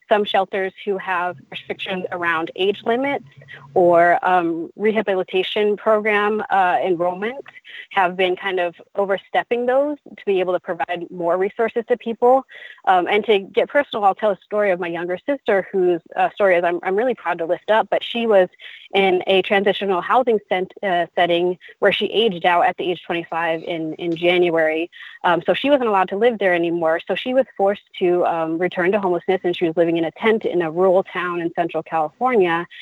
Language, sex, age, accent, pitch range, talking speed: English, female, 20-39, American, 175-210 Hz, 195 wpm